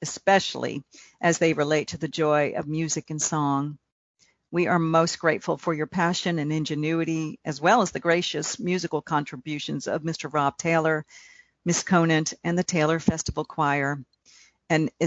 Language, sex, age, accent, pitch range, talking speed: English, female, 50-69, American, 155-175 Hz, 155 wpm